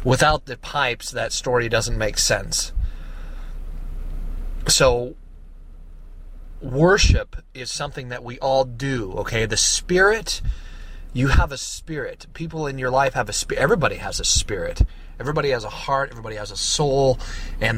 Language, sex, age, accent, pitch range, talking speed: English, male, 30-49, American, 85-125 Hz, 145 wpm